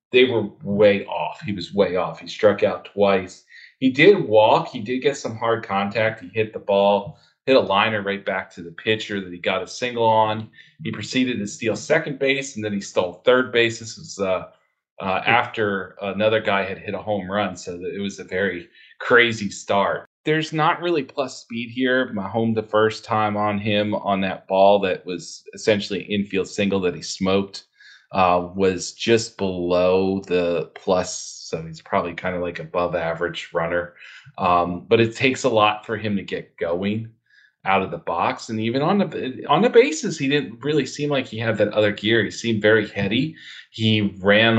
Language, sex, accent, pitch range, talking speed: English, male, American, 95-115 Hz, 195 wpm